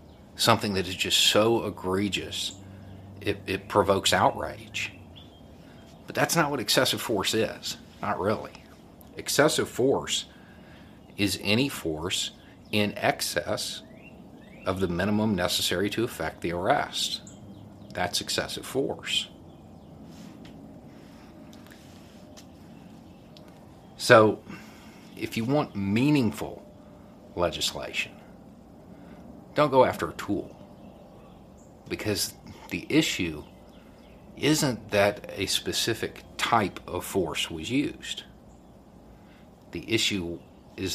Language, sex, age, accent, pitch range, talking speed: English, male, 50-69, American, 95-105 Hz, 90 wpm